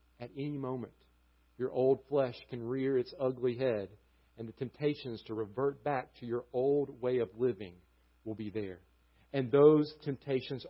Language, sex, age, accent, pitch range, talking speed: English, male, 50-69, American, 150-205 Hz, 165 wpm